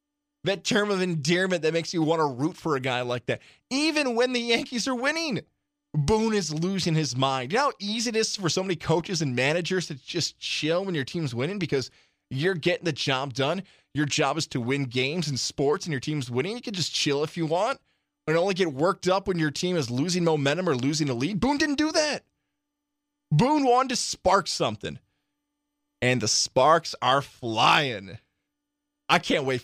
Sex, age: male, 20-39